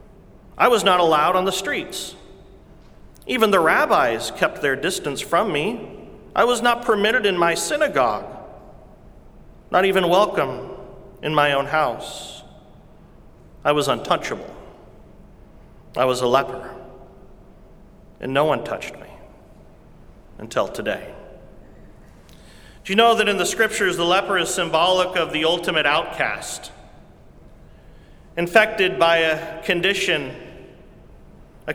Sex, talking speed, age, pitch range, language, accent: male, 120 wpm, 40-59, 160-200 Hz, English, American